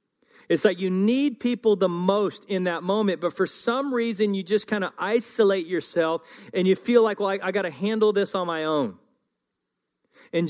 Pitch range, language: 140-195 Hz, English